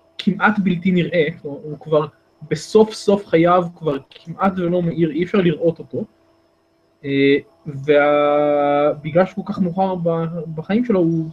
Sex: male